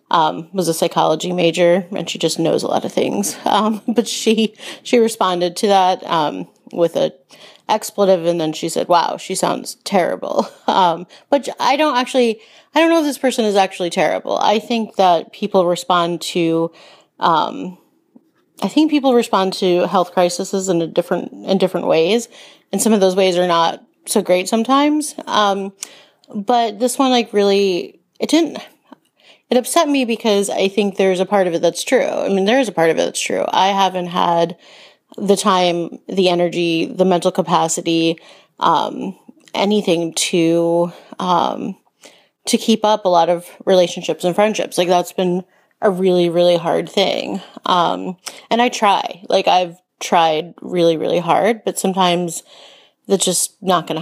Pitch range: 175-225 Hz